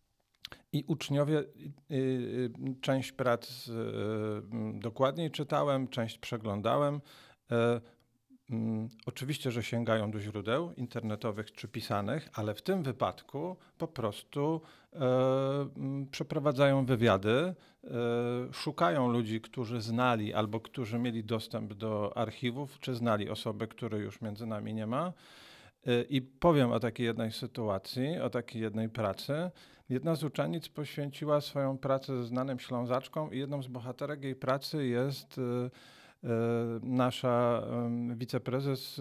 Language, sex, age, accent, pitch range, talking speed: Polish, male, 50-69, native, 115-140 Hz, 110 wpm